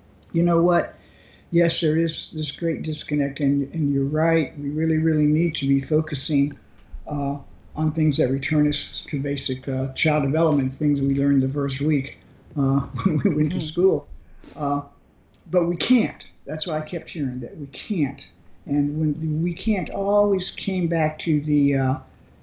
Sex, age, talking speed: male, 60-79, 175 wpm